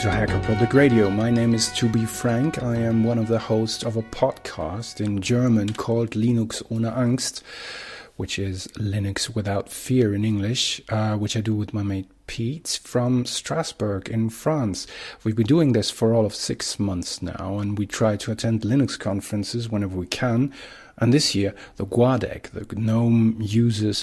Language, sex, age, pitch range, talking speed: English, male, 40-59, 100-120 Hz, 180 wpm